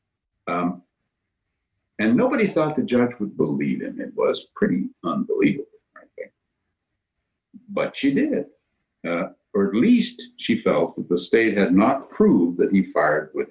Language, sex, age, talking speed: English, male, 50-69, 145 wpm